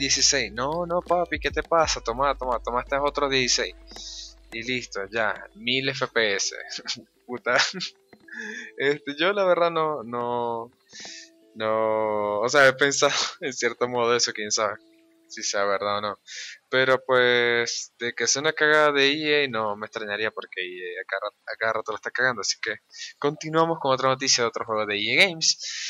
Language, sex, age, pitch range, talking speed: Spanish, male, 20-39, 110-145 Hz, 175 wpm